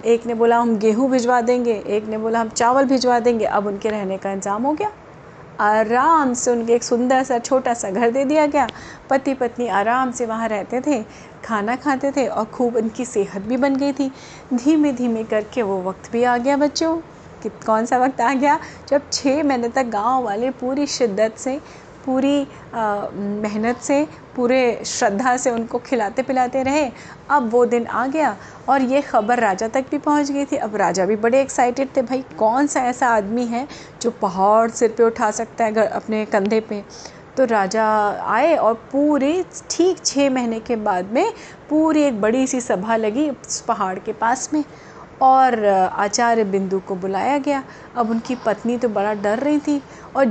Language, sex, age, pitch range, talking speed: Hindi, female, 30-49, 220-275 Hz, 190 wpm